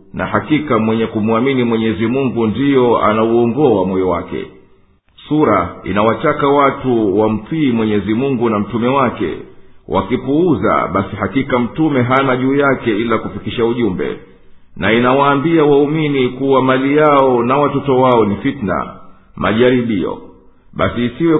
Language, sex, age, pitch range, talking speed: Swahili, male, 50-69, 110-140 Hz, 125 wpm